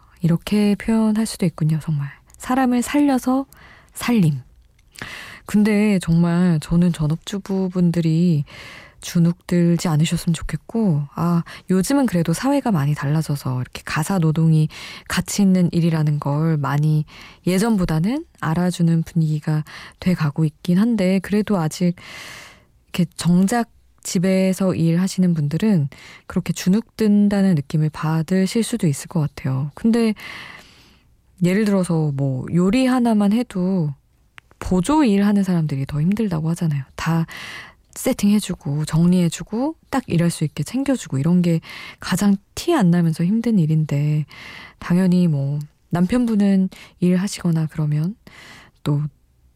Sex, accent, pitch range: female, native, 155-200 Hz